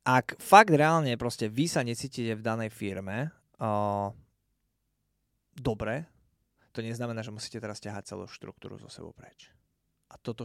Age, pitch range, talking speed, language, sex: 20-39, 110-145 Hz, 145 wpm, Slovak, male